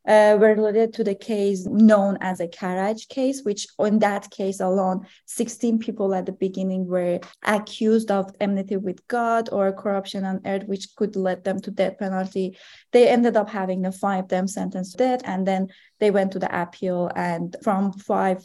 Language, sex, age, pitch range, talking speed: English, female, 20-39, 190-220 Hz, 190 wpm